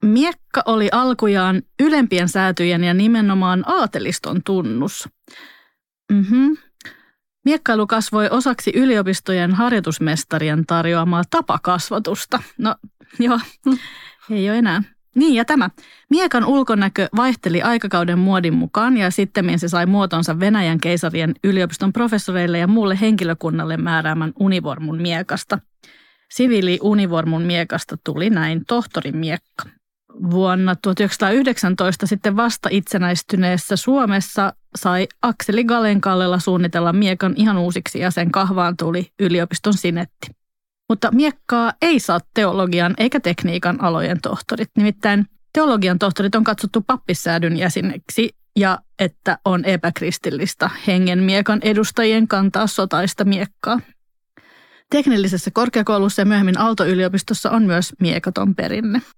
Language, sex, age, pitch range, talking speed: Finnish, female, 30-49, 180-225 Hz, 110 wpm